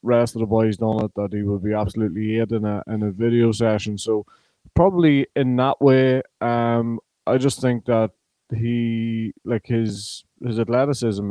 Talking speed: 175 wpm